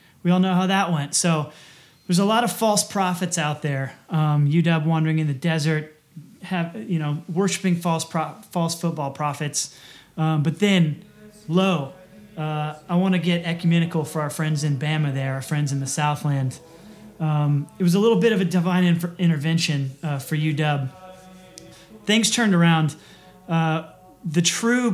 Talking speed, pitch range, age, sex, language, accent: 170 wpm, 150-180 Hz, 30-49, male, English, American